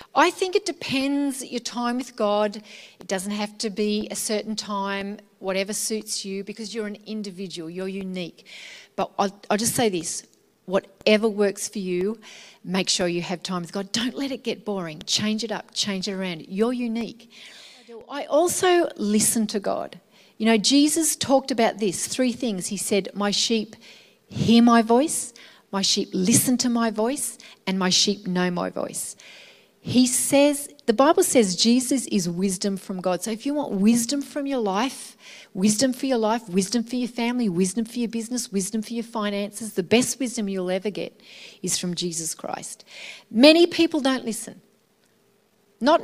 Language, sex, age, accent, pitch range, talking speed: English, female, 40-59, Australian, 200-245 Hz, 175 wpm